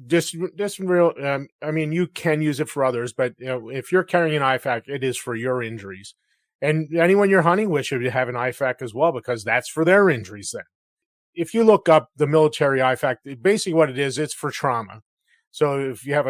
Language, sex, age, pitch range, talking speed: English, male, 30-49, 120-150 Hz, 220 wpm